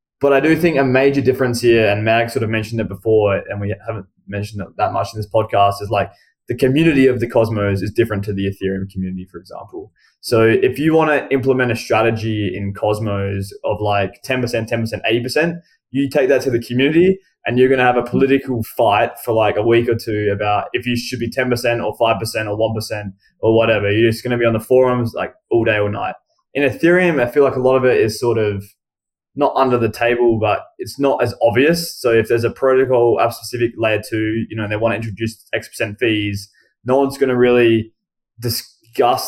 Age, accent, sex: 20-39, Australian, male